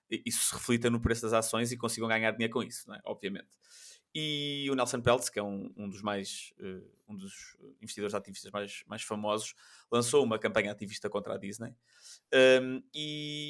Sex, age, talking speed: male, 20-39, 190 wpm